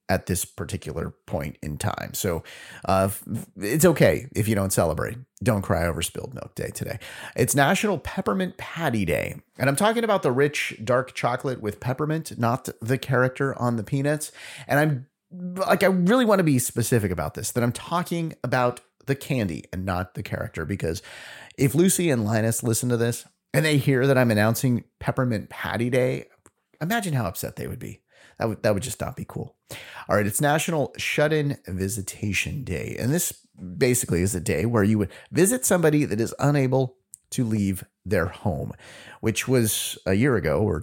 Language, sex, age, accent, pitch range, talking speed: English, male, 30-49, American, 100-145 Hz, 180 wpm